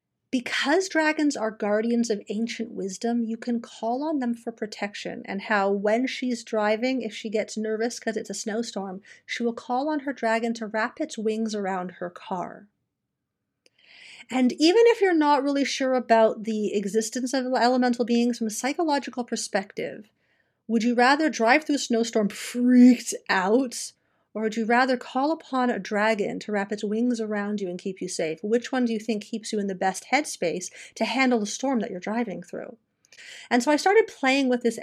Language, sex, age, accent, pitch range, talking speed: English, female, 40-59, American, 210-255 Hz, 190 wpm